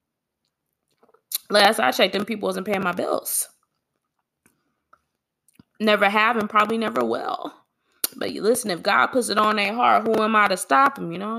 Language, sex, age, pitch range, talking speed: English, female, 20-39, 190-250 Hz, 180 wpm